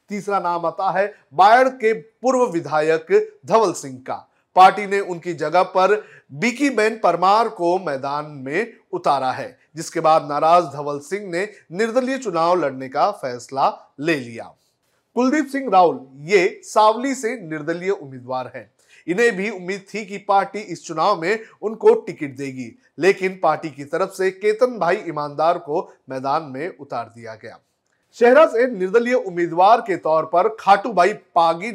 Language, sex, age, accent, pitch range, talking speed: Hindi, male, 40-59, native, 160-220 Hz, 150 wpm